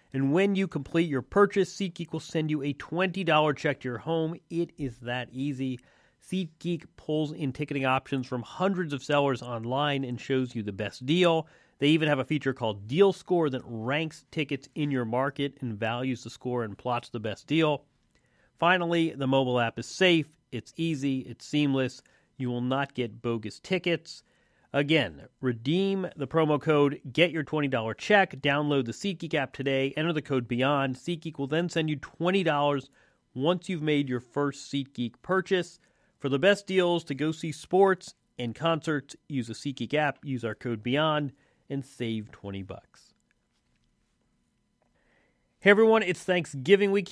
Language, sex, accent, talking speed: English, male, American, 170 wpm